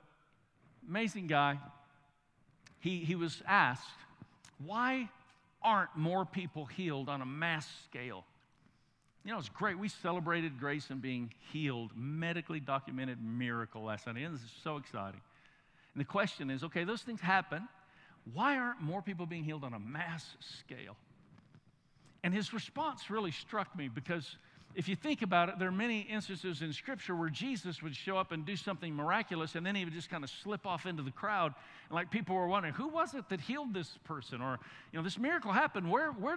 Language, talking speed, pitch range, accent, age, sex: English, 185 wpm, 145-200 Hz, American, 50-69, male